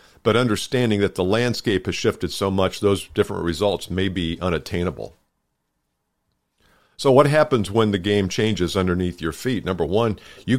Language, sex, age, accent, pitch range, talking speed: English, male, 50-69, American, 90-115 Hz, 160 wpm